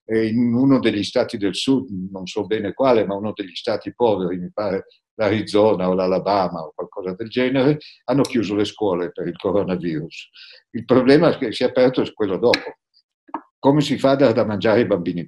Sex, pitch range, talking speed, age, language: male, 105-140 Hz, 195 wpm, 60-79, Italian